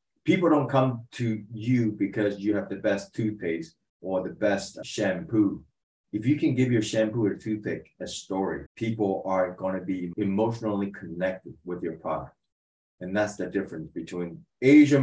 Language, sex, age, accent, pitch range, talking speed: English, male, 30-49, American, 90-115 Hz, 165 wpm